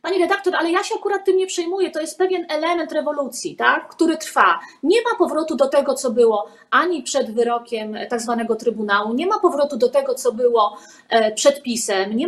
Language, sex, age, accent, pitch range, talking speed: Polish, female, 30-49, native, 240-330 Hz, 195 wpm